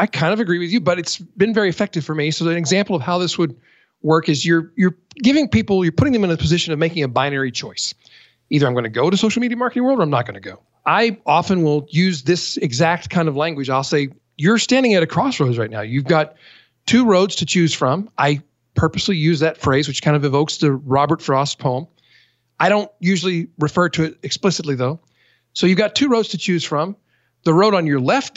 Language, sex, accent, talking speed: English, male, American, 235 wpm